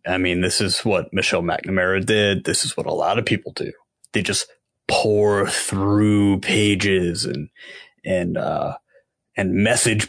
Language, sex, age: English, male, 30-49